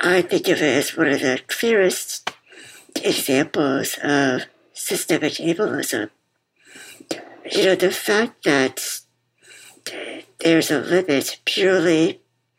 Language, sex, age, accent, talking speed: English, male, 50-69, American, 105 wpm